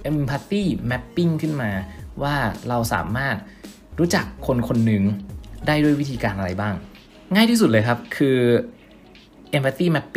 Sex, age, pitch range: male, 20-39, 100-145 Hz